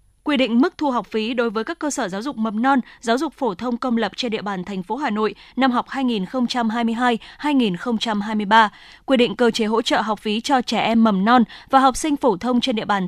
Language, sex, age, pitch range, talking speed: Vietnamese, female, 20-39, 215-270 Hz, 240 wpm